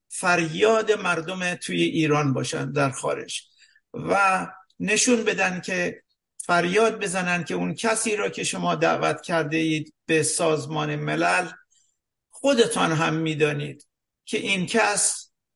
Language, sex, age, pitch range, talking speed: English, male, 50-69, 170-220 Hz, 120 wpm